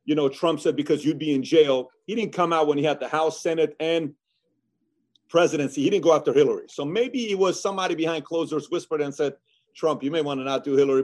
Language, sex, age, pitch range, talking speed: English, male, 40-59, 140-175 Hz, 245 wpm